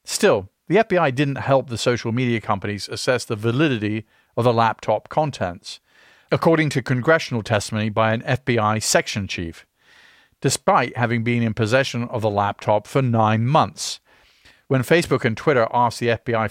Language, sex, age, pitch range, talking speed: English, male, 50-69, 105-130 Hz, 155 wpm